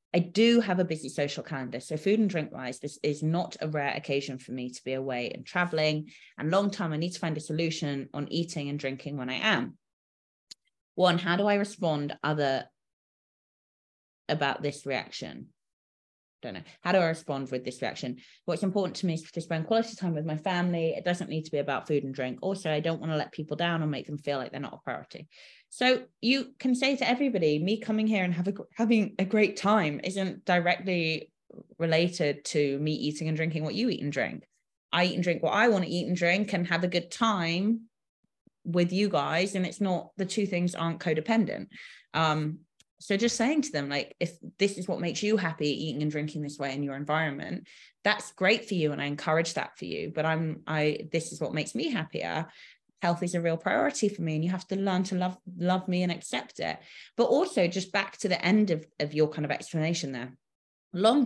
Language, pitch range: English, 150-195 Hz